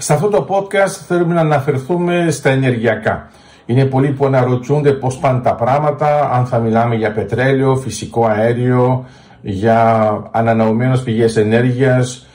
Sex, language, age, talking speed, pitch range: male, Greek, 50-69, 135 wpm, 115-140 Hz